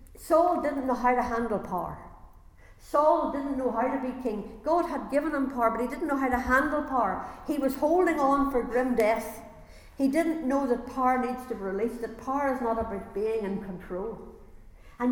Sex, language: female, English